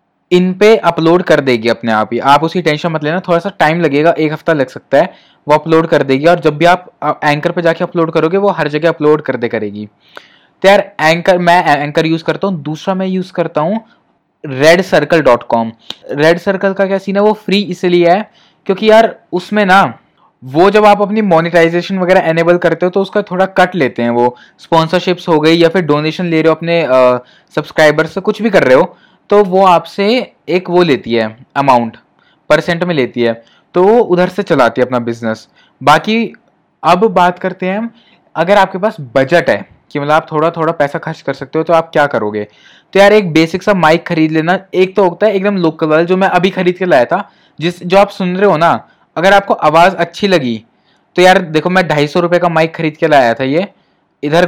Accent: native